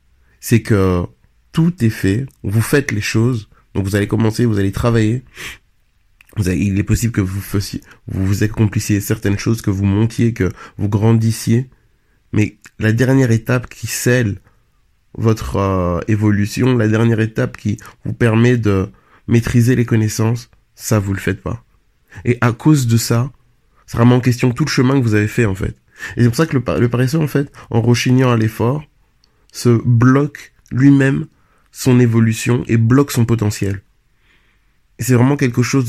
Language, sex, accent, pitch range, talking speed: French, male, French, 105-125 Hz, 170 wpm